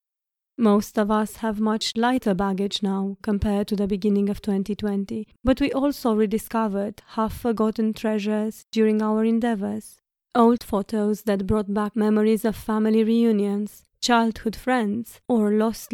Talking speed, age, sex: 135 wpm, 20-39, female